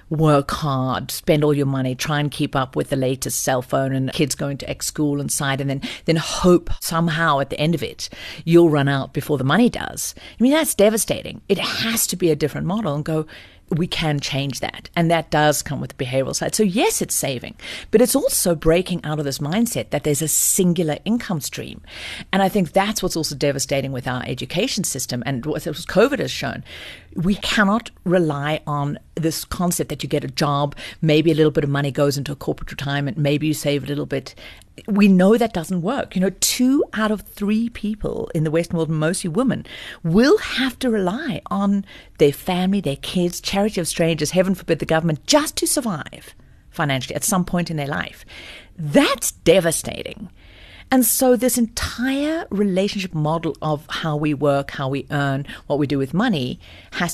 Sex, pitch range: female, 145-210 Hz